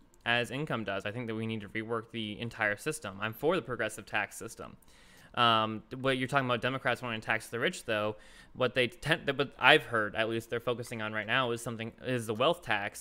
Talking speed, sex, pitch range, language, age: 230 wpm, male, 105-125 Hz, English, 20-39